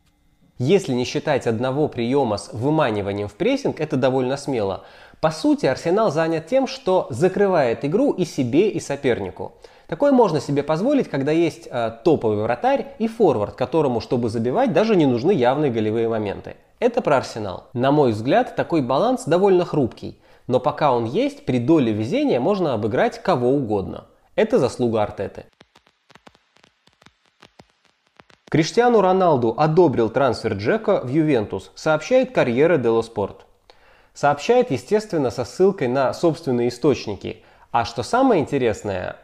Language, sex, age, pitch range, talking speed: Russian, male, 20-39, 120-180 Hz, 135 wpm